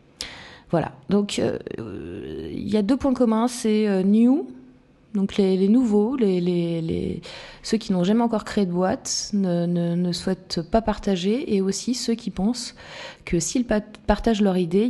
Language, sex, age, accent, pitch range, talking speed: French, female, 30-49, French, 170-210 Hz, 150 wpm